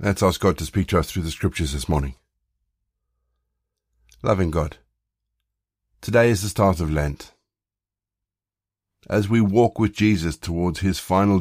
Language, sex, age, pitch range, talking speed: English, male, 50-69, 85-105 Hz, 145 wpm